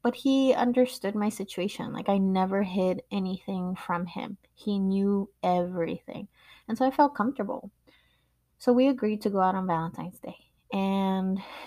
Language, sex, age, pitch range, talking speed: English, female, 20-39, 185-235 Hz, 155 wpm